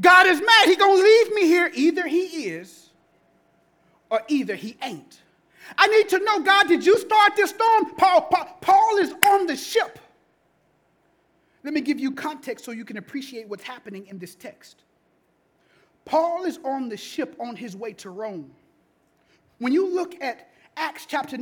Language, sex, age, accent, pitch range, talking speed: English, male, 30-49, American, 250-350 Hz, 175 wpm